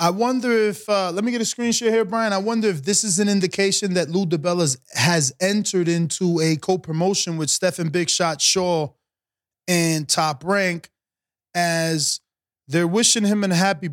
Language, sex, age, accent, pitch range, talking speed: English, male, 20-39, American, 150-190 Hz, 170 wpm